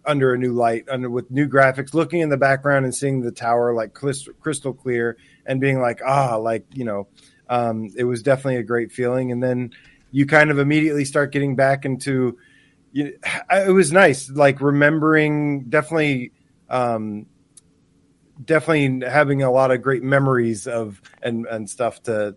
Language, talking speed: English, 175 wpm